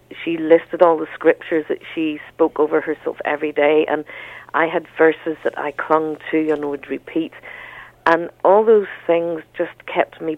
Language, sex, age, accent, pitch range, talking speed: English, female, 50-69, British, 150-170 Hz, 185 wpm